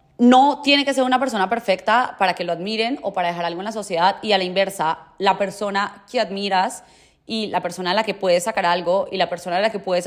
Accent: Colombian